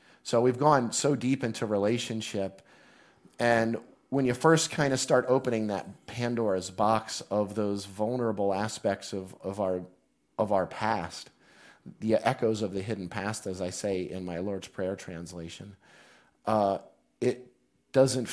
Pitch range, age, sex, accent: 100-120 Hz, 30-49, male, American